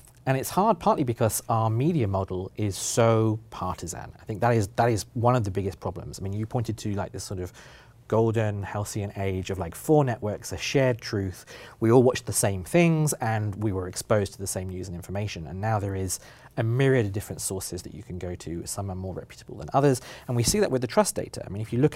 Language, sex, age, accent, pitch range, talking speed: English, male, 40-59, British, 100-125 Hz, 245 wpm